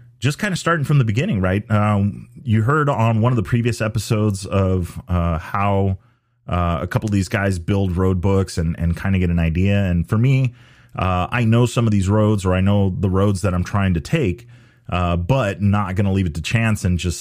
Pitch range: 90-120 Hz